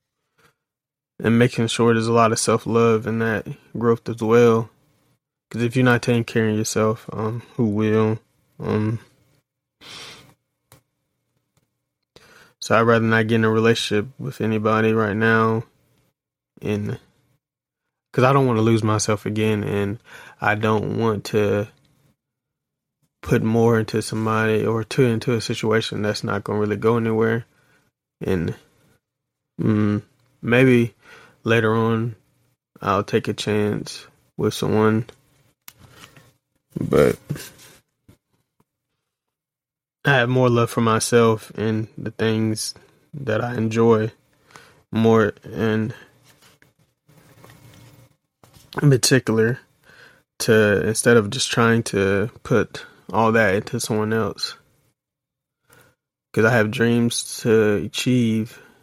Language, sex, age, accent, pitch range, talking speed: English, male, 20-39, American, 110-120 Hz, 115 wpm